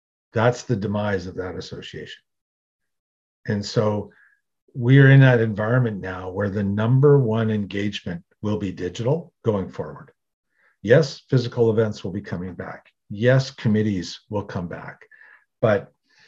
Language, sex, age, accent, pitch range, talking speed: English, male, 50-69, American, 105-135 Hz, 135 wpm